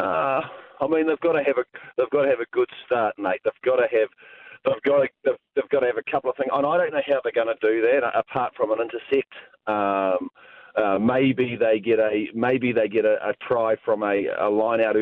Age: 40-59